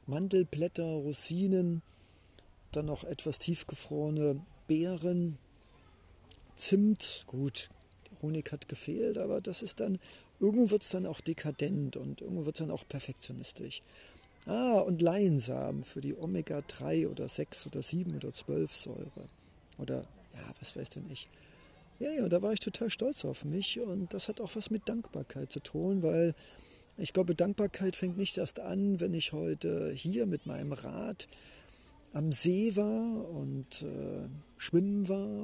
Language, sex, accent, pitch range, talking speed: German, male, German, 145-195 Hz, 150 wpm